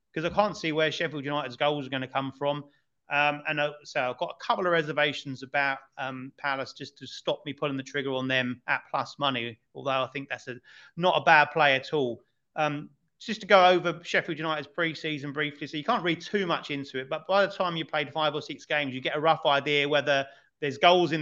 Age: 30-49